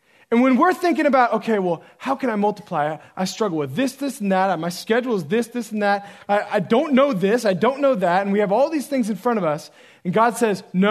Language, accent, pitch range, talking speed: English, American, 140-200 Hz, 265 wpm